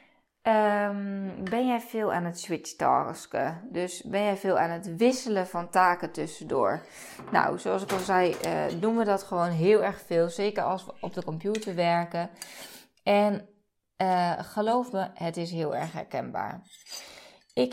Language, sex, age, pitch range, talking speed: Dutch, female, 20-39, 175-215 Hz, 155 wpm